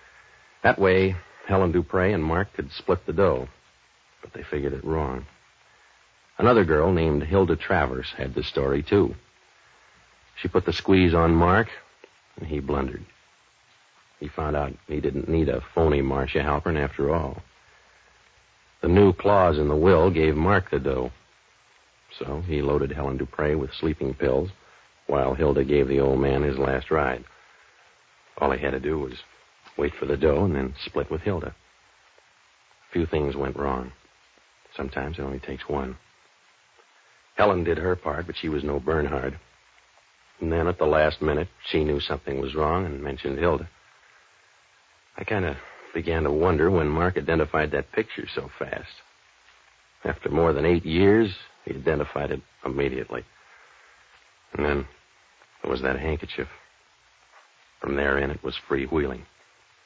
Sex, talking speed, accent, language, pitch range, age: male, 155 wpm, American, English, 70-90 Hz, 60-79